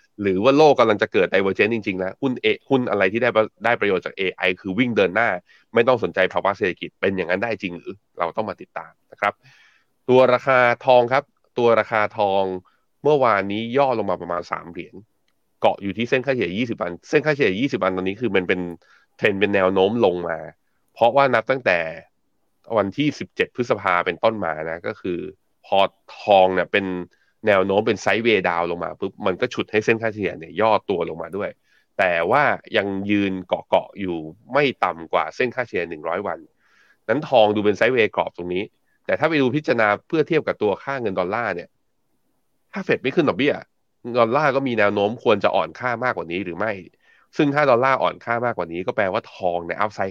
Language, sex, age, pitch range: Thai, male, 20-39, 95-120 Hz